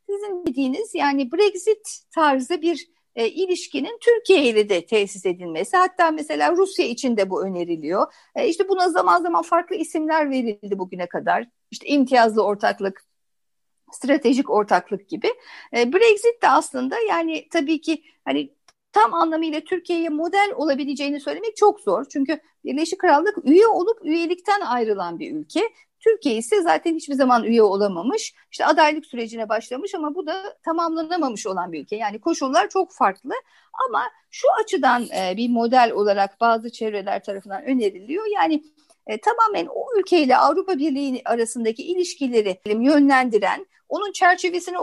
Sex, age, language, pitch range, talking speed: female, 60-79, Turkish, 230-375 Hz, 140 wpm